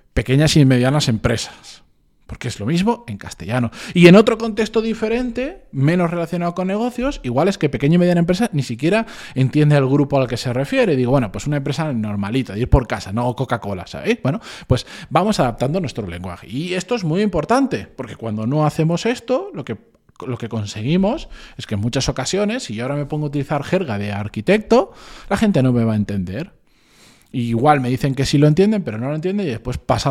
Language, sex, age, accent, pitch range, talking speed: Spanish, male, 20-39, Spanish, 115-165 Hz, 210 wpm